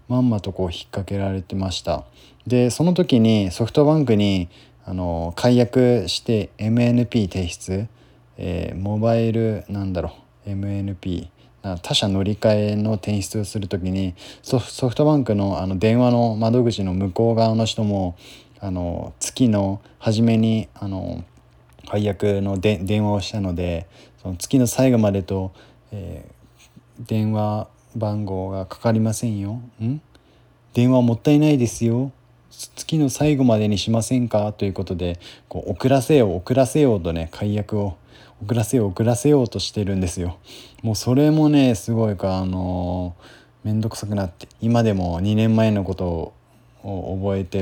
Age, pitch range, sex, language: 20-39, 95-120 Hz, male, Japanese